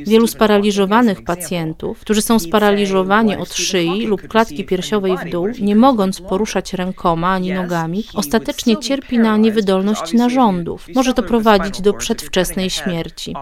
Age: 40-59